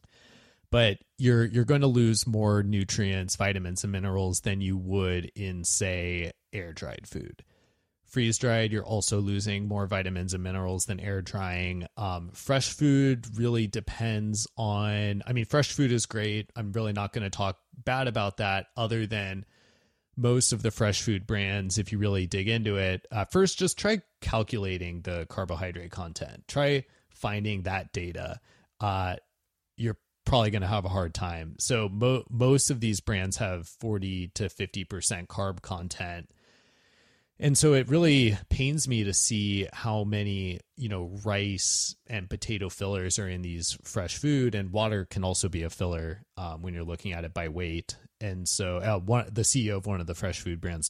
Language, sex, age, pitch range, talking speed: English, male, 20-39, 95-115 Hz, 170 wpm